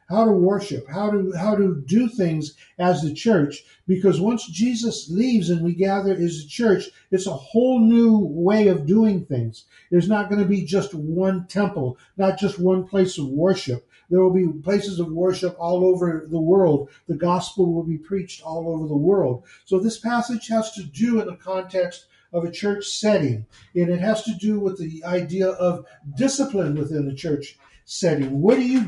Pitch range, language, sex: 165-210 Hz, English, male